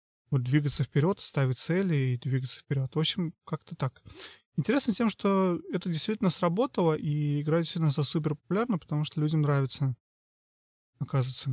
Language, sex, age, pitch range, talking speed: Russian, male, 30-49, 135-165 Hz, 145 wpm